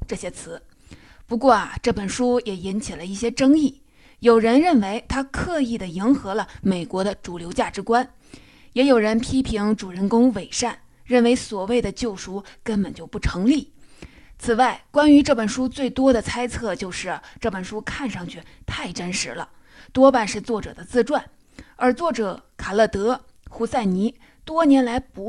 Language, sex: Chinese, female